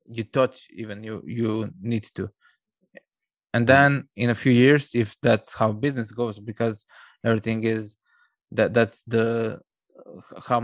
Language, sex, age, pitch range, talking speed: English, male, 20-39, 115-135 Hz, 140 wpm